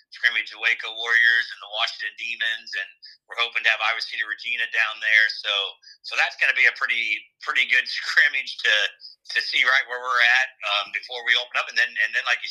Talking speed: 225 wpm